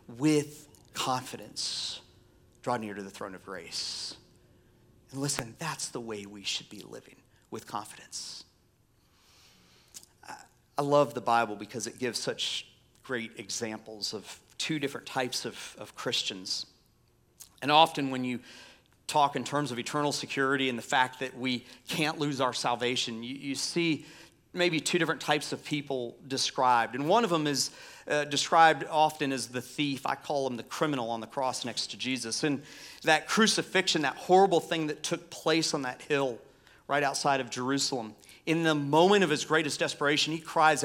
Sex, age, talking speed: male, 40-59, 165 wpm